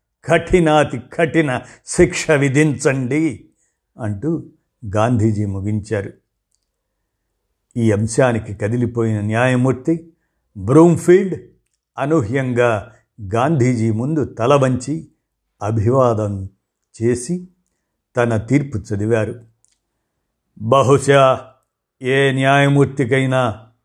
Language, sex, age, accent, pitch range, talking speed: Telugu, male, 60-79, native, 115-140 Hz, 65 wpm